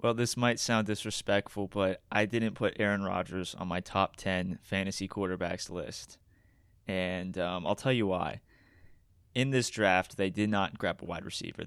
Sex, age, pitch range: male, 20-39, 90-110 Hz